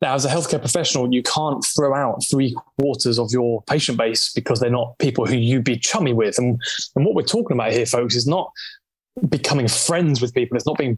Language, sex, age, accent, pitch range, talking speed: English, male, 20-39, British, 125-155 Hz, 225 wpm